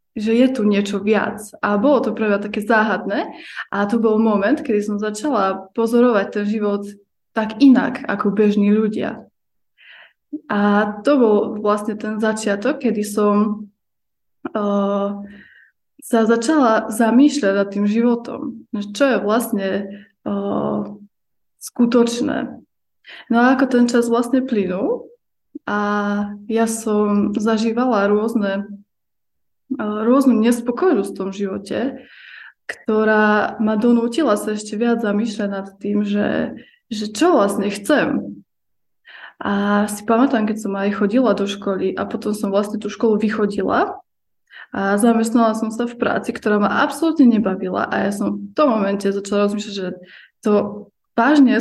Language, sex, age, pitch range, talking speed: Slovak, female, 20-39, 205-235 Hz, 135 wpm